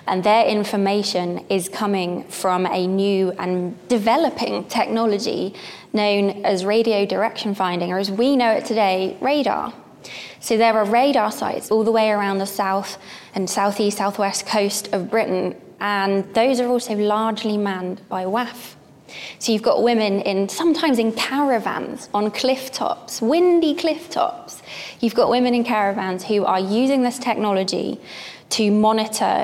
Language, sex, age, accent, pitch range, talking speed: English, female, 20-39, British, 195-240 Hz, 150 wpm